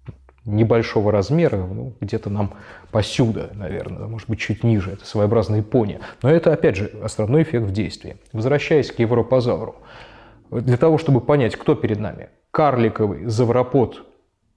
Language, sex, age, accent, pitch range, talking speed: Russian, male, 20-39, native, 105-130 Hz, 140 wpm